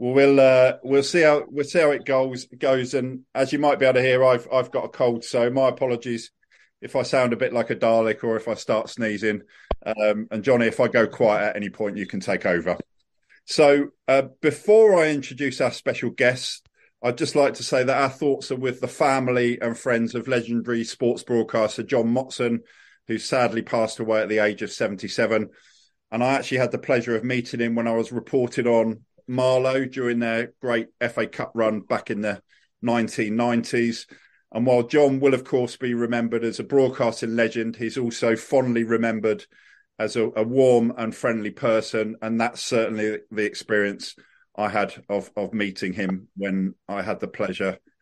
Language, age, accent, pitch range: English, 50-69, British, 115-135 Hz